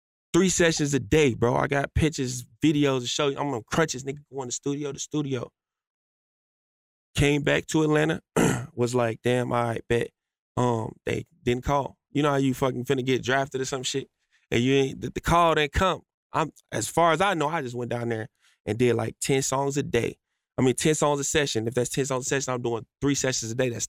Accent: American